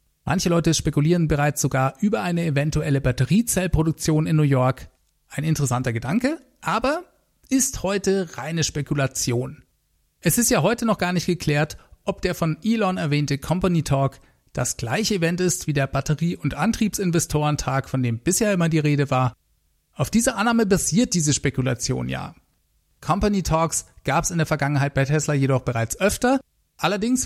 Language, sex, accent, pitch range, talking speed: German, male, German, 140-200 Hz, 155 wpm